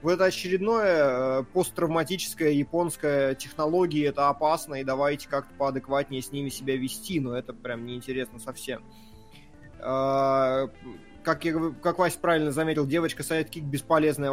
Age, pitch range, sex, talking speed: 20-39, 140-190 Hz, male, 135 wpm